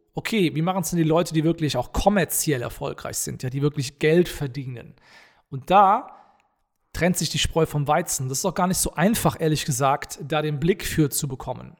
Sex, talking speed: male, 205 wpm